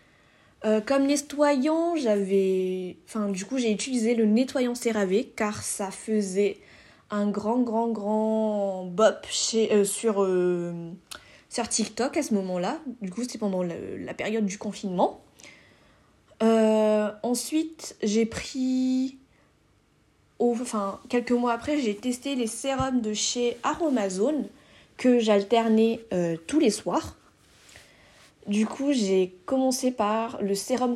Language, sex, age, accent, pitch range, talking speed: French, female, 20-39, French, 210-255 Hz, 130 wpm